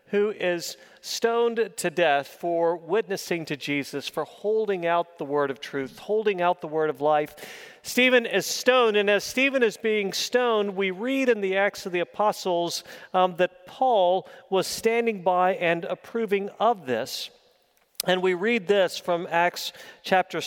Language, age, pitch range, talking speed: English, 40-59, 170-215 Hz, 165 wpm